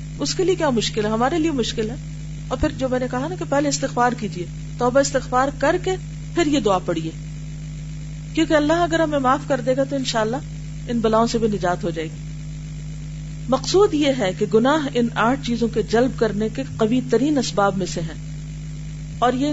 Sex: female